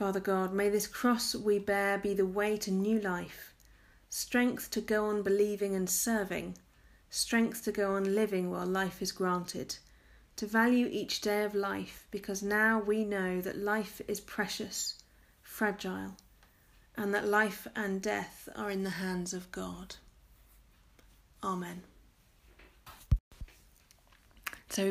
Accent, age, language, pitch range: British, 40-59, English, 185-210 Hz